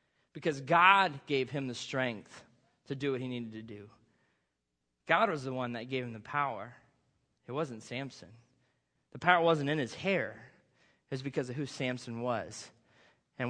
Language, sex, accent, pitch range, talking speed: English, male, American, 135-190 Hz, 175 wpm